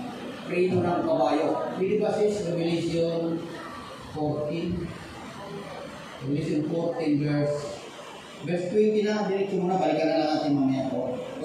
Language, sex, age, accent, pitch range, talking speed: Filipino, male, 30-49, native, 155-210 Hz, 105 wpm